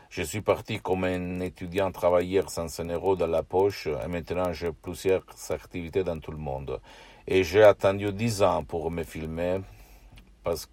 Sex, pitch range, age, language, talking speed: male, 75-95 Hz, 60-79, Italian, 175 wpm